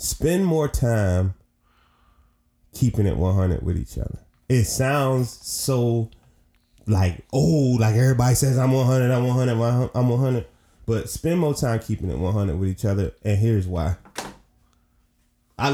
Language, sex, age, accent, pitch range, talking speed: English, male, 20-39, American, 95-120 Hz, 140 wpm